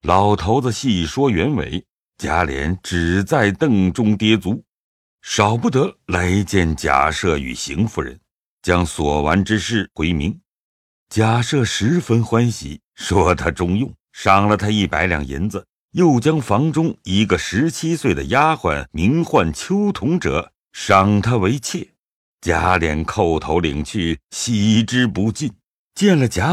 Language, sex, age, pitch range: Chinese, male, 60-79, 90-135 Hz